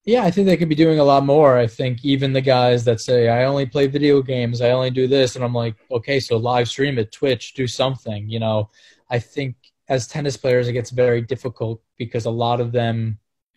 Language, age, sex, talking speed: English, 20-39, male, 235 wpm